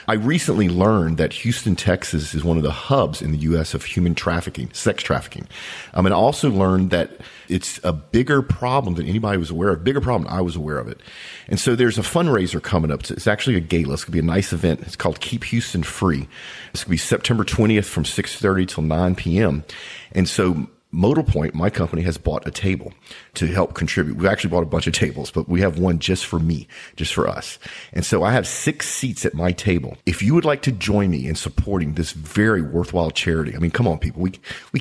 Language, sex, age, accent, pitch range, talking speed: English, male, 40-59, American, 85-110 Hz, 235 wpm